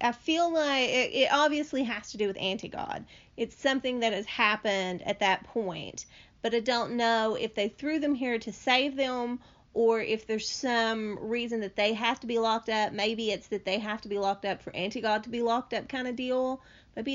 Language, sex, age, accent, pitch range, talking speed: English, female, 30-49, American, 195-235 Hz, 215 wpm